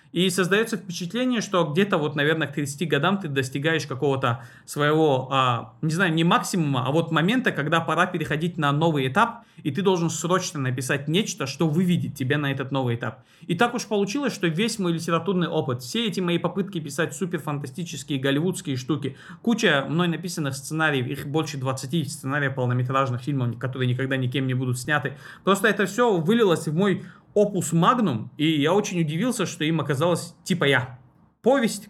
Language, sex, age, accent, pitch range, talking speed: Russian, male, 30-49, native, 145-195 Hz, 170 wpm